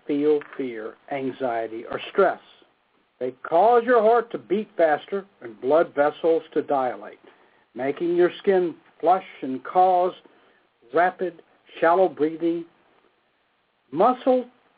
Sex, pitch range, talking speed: male, 150-230 Hz, 110 wpm